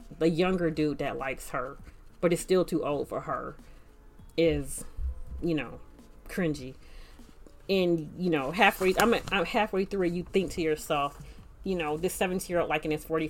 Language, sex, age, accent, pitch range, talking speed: English, female, 30-49, American, 150-185 Hz, 180 wpm